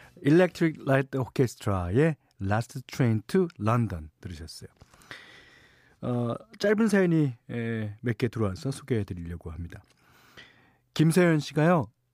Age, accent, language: 40-59, native, Korean